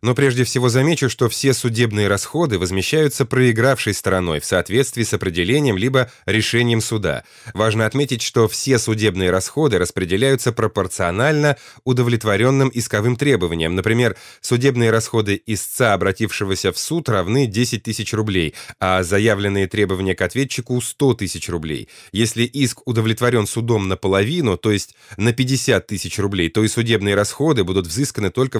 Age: 20-39